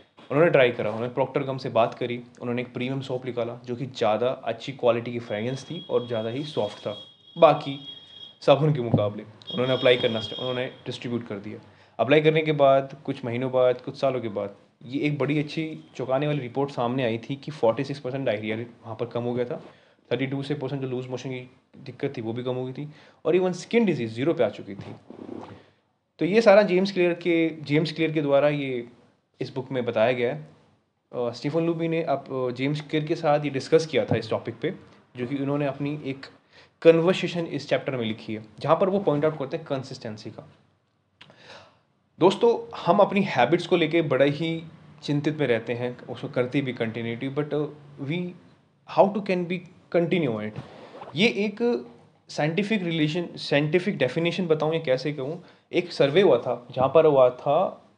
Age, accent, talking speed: 20-39, native, 190 wpm